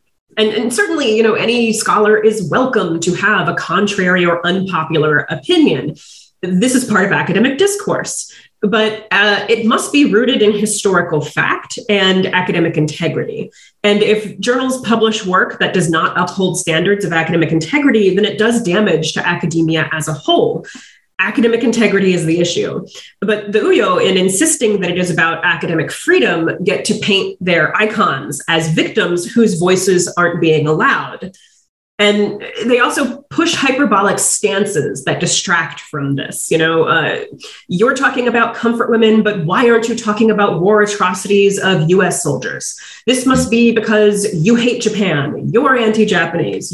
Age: 30-49